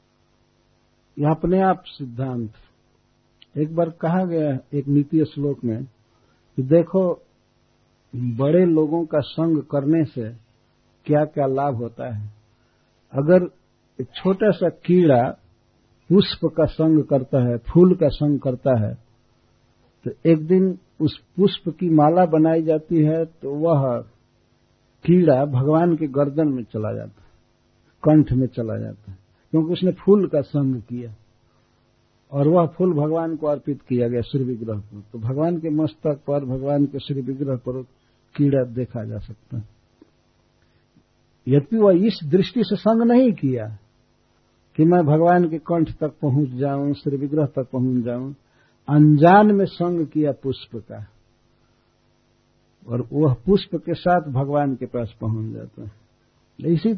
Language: Hindi